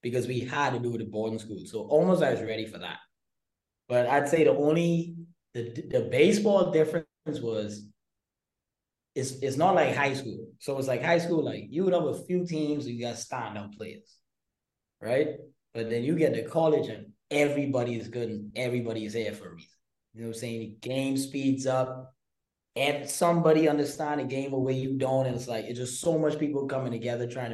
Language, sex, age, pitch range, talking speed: English, male, 20-39, 110-150 Hz, 205 wpm